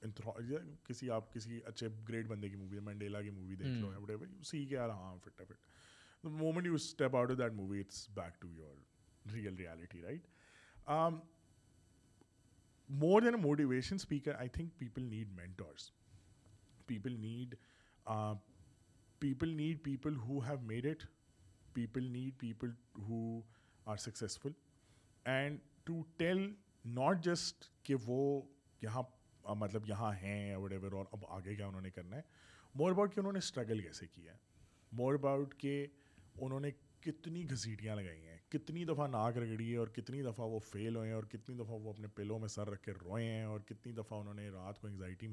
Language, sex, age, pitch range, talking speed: Urdu, male, 30-49, 105-140 Hz, 110 wpm